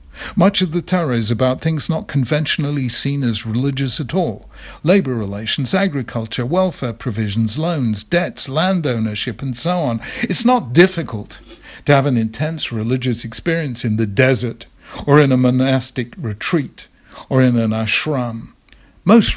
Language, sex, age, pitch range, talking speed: English, male, 60-79, 120-155 Hz, 150 wpm